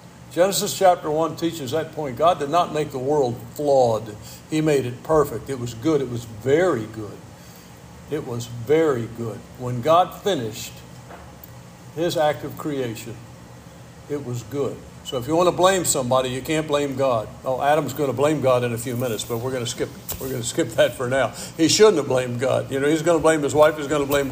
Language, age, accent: English, 60-79, American